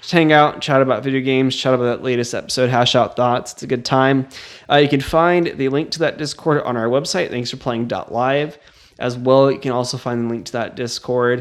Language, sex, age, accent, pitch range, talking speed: English, male, 20-39, American, 125-160 Hz, 230 wpm